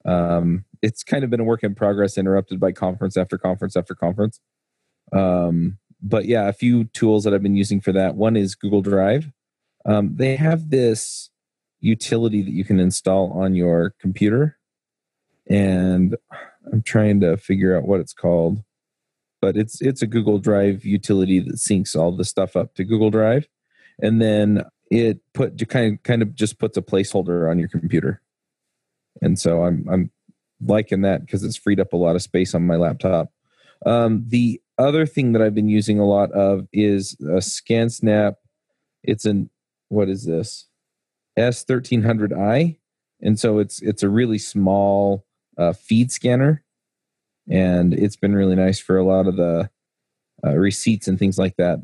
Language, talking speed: English, 170 wpm